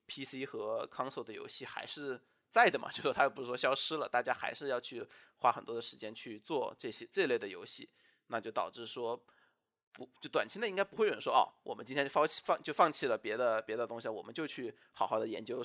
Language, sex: Chinese, male